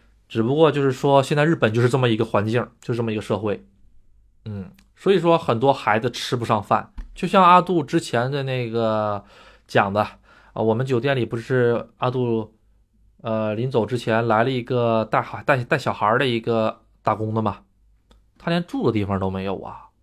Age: 20-39